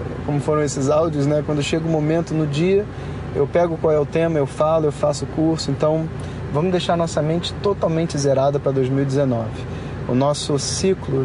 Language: Portuguese